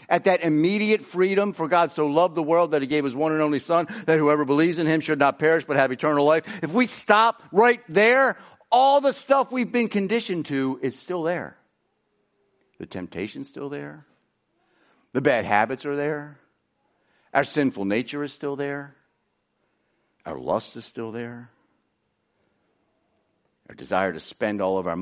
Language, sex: English, male